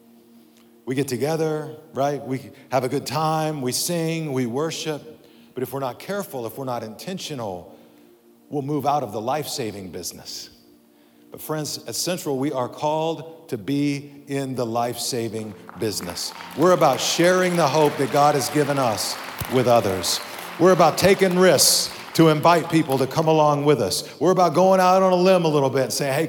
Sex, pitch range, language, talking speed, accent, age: male, 125-180 Hz, English, 180 wpm, American, 50-69